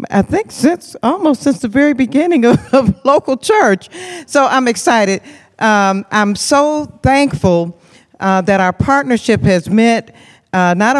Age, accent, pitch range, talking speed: 50-69, American, 185-250 Hz, 135 wpm